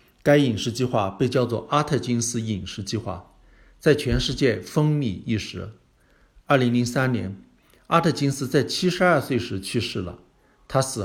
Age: 50-69